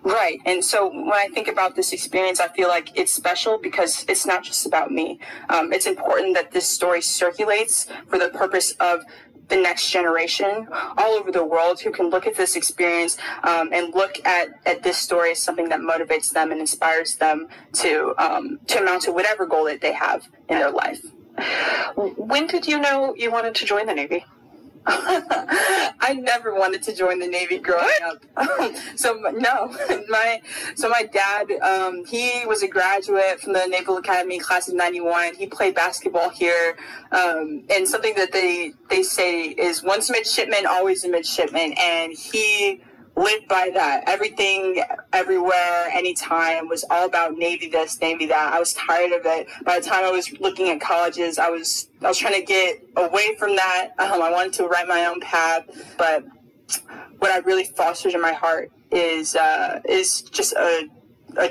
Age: 20-39